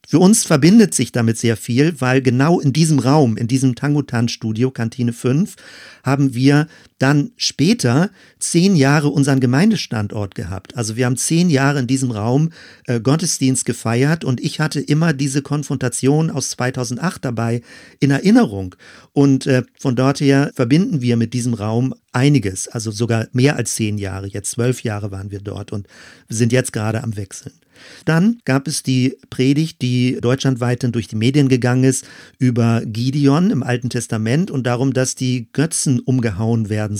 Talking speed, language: 160 wpm, German